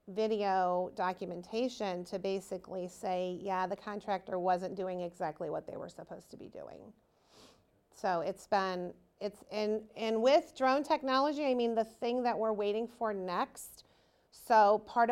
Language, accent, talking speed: English, American, 150 wpm